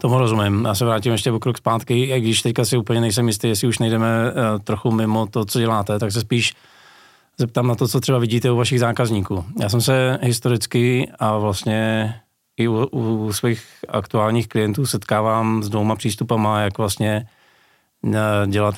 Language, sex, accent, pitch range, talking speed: Czech, male, native, 100-120 Hz, 180 wpm